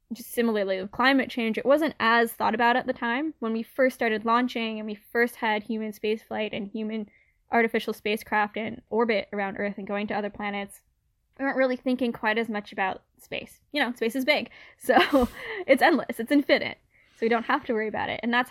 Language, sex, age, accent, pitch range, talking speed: English, female, 10-29, American, 205-240 Hz, 215 wpm